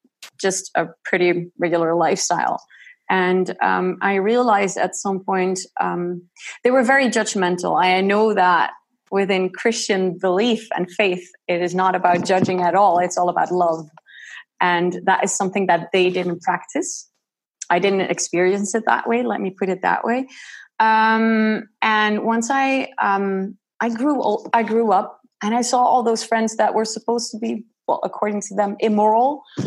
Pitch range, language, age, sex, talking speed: 185-230 Hz, English, 20-39, female, 165 wpm